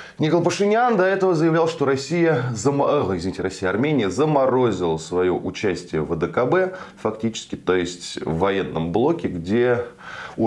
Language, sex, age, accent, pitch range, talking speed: Russian, male, 20-39, native, 95-135 Hz, 125 wpm